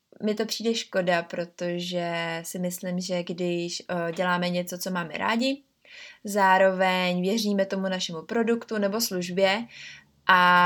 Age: 20-39